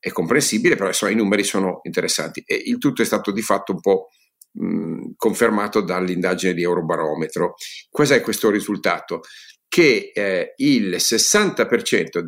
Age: 50-69